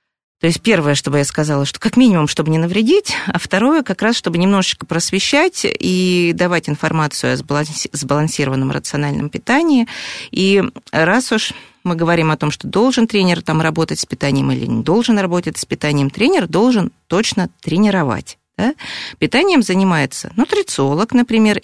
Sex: female